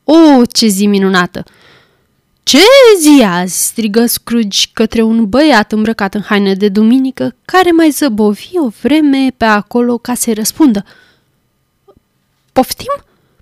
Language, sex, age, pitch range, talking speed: Romanian, female, 20-39, 215-300 Hz, 130 wpm